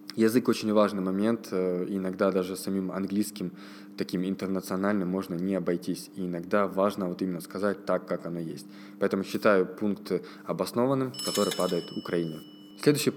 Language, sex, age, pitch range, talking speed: Russian, male, 20-39, 95-115 Hz, 140 wpm